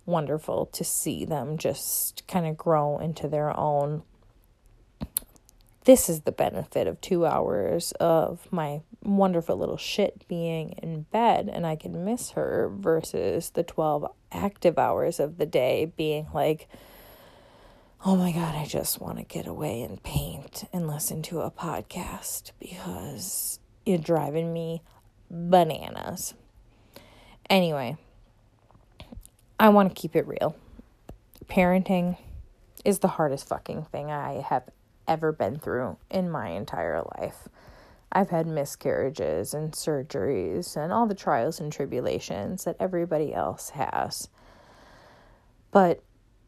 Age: 20-39